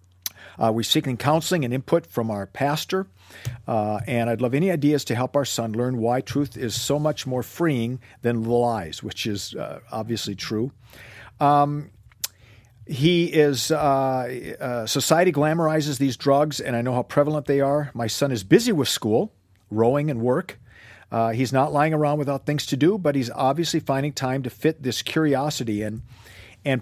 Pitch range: 115-145 Hz